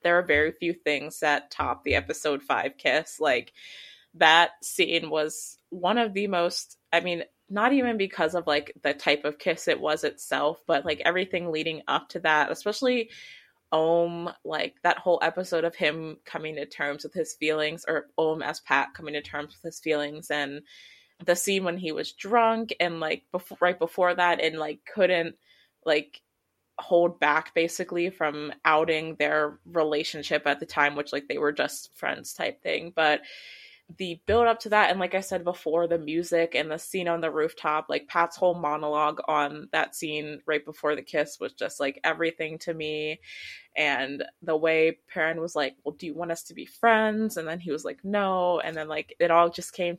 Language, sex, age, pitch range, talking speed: English, female, 20-39, 150-175 Hz, 195 wpm